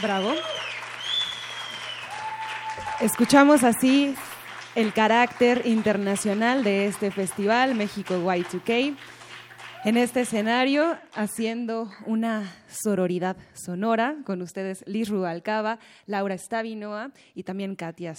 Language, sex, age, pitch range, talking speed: Spanish, female, 20-39, 180-235 Hz, 90 wpm